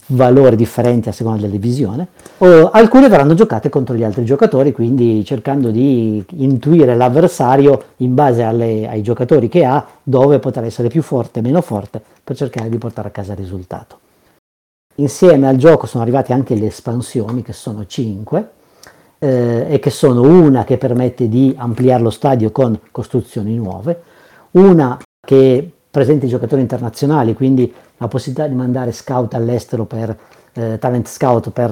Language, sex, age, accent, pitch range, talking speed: Italian, male, 40-59, native, 115-145 Hz, 160 wpm